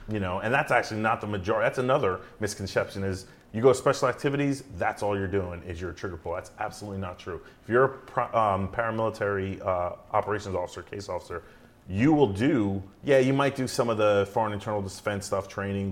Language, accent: English, American